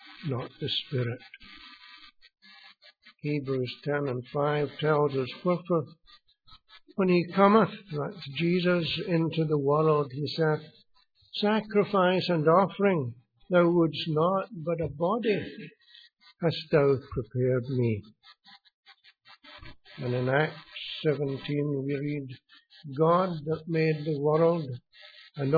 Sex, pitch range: male, 135-175 Hz